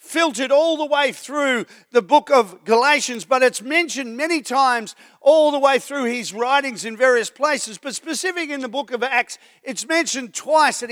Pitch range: 235-310 Hz